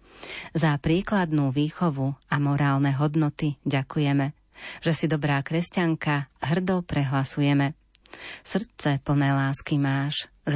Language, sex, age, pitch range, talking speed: Slovak, female, 30-49, 140-165 Hz, 100 wpm